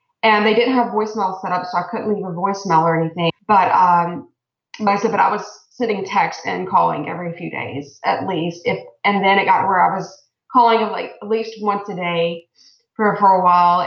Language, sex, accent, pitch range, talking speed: English, female, American, 185-230 Hz, 220 wpm